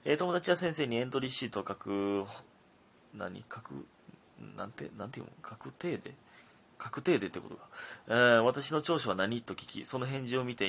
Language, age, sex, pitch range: Japanese, 30-49, male, 100-130 Hz